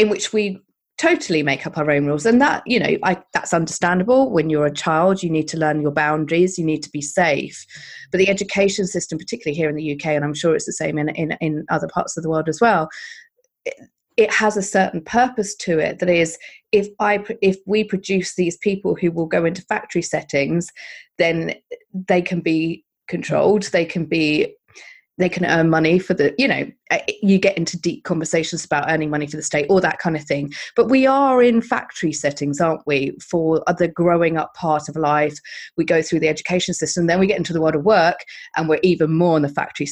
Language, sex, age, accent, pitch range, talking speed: English, female, 30-49, British, 155-195 Hz, 220 wpm